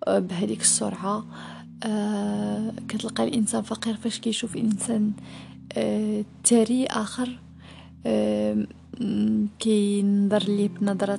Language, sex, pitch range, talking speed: Arabic, female, 195-225 Hz, 90 wpm